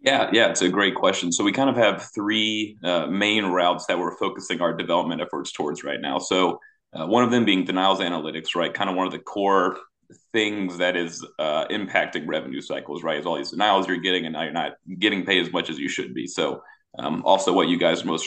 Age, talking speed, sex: 30-49, 240 wpm, male